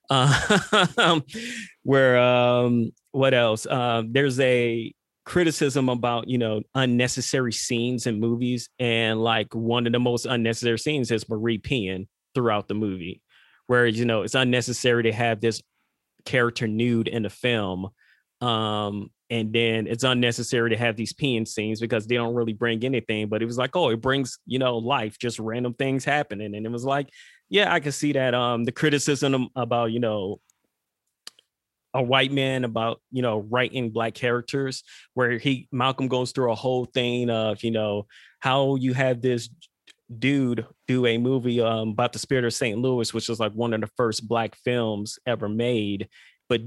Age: 20-39